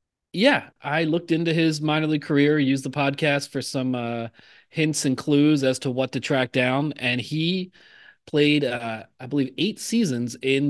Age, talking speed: 30-49, 180 wpm